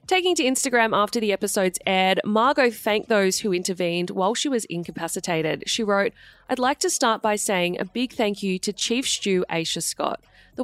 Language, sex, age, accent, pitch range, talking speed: English, female, 30-49, Australian, 175-230 Hz, 190 wpm